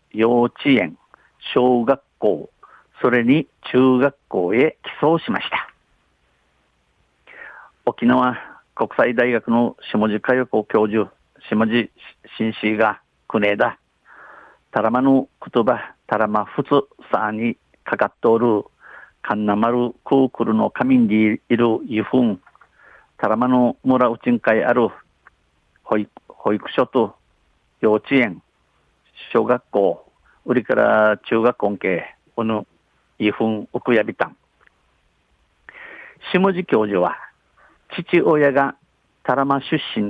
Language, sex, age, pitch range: Japanese, male, 50-69, 110-130 Hz